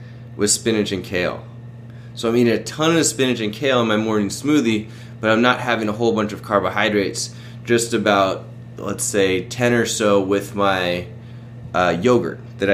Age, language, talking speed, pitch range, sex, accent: 20-39, English, 180 wpm, 110-125 Hz, male, American